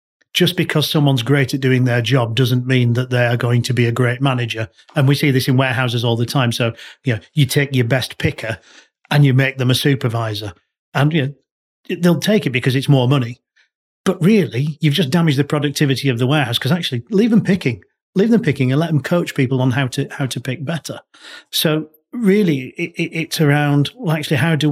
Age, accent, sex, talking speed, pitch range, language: 40-59, British, male, 225 wpm, 125-150 Hz, English